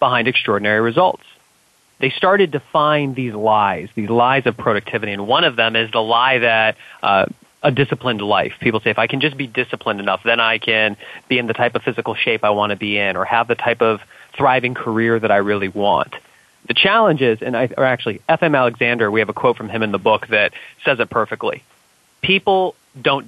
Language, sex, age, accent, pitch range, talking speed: English, male, 30-49, American, 110-135 Hz, 215 wpm